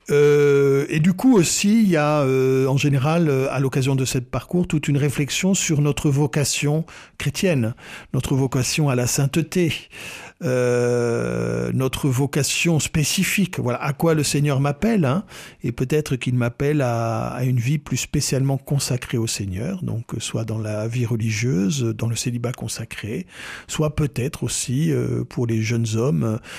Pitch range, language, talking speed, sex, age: 120-150 Hz, French, 160 wpm, male, 50-69